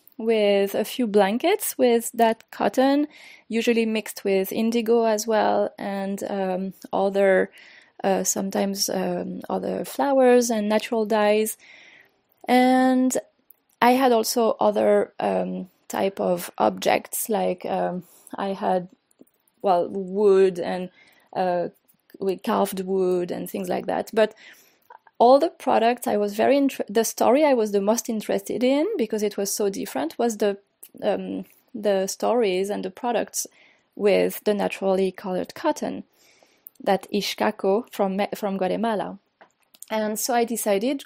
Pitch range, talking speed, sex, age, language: 195-250 Hz, 130 wpm, female, 20-39, English